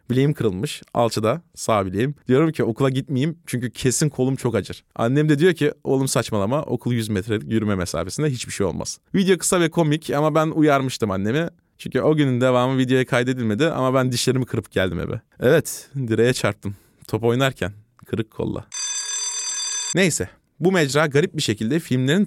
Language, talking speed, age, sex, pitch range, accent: Turkish, 165 wpm, 30-49, male, 110-150 Hz, native